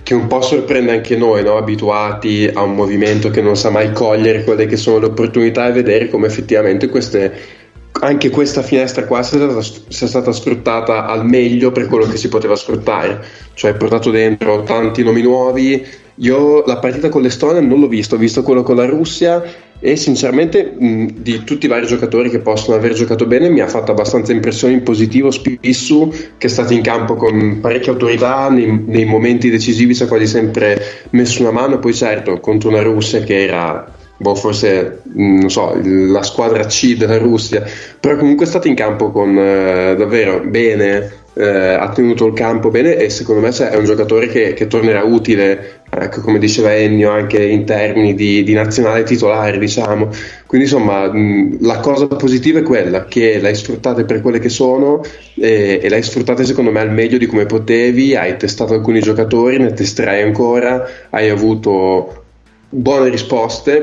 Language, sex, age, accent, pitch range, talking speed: Italian, male, 20-39, native, 105-125 Hz, 185 wpm